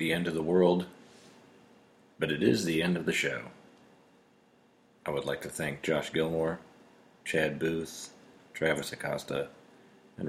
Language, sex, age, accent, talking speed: English, male, 40-59, American, 145 wpm